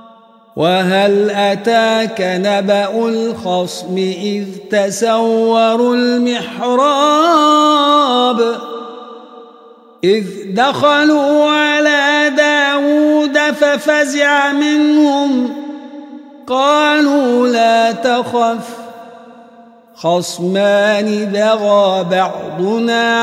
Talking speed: 50 wpm